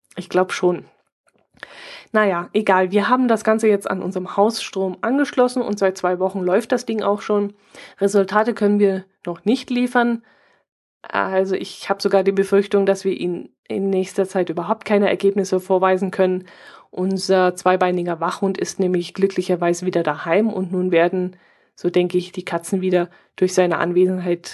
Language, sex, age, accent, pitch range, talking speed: German, female, 20-39, German, 180-200 Hz, 160 wpm